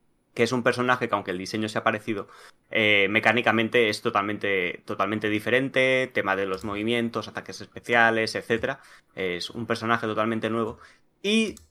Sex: male